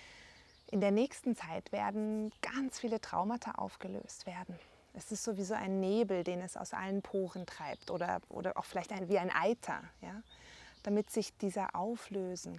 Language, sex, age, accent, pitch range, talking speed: German, female, 20-39, German, 185-220 Hz, 160 wpm